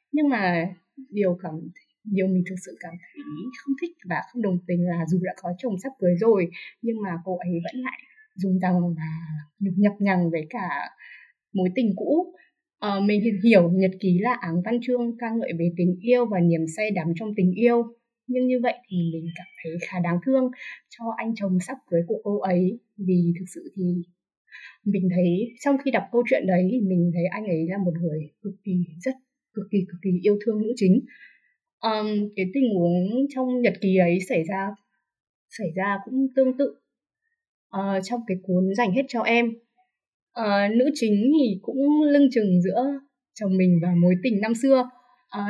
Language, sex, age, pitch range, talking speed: Vietnamese, female, 20-39, 180-245 Hz, 195 wpm